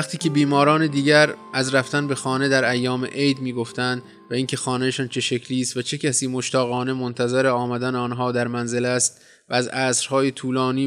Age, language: 20-39, Persian